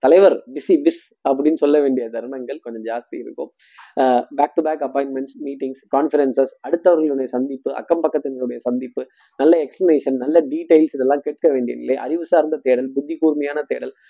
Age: 20-39